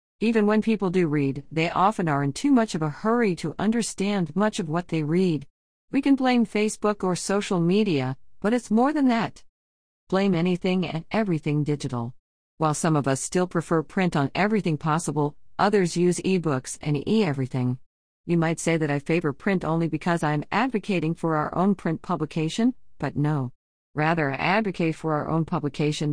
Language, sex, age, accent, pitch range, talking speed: English, female, 50-69, American, 145-195 Hz, 180 wpm